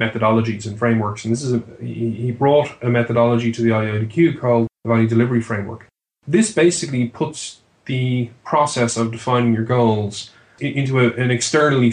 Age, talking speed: 10-29, 160 wpm